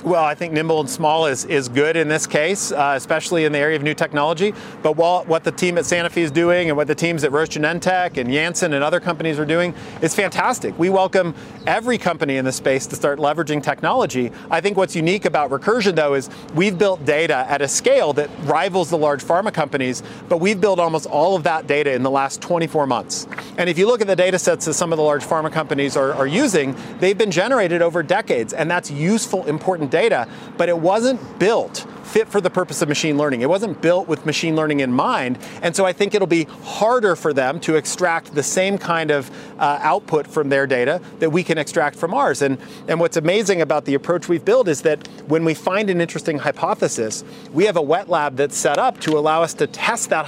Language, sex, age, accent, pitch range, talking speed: English, male, 40-59, American, 150-185 Hz, 230 wpm